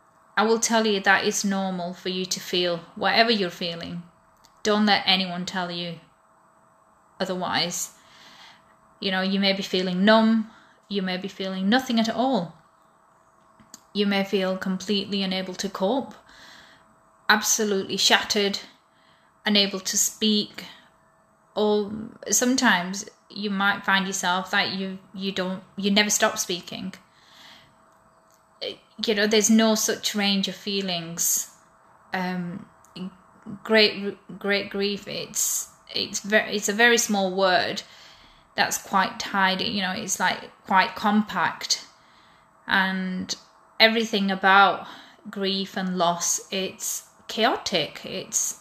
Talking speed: 120 wpm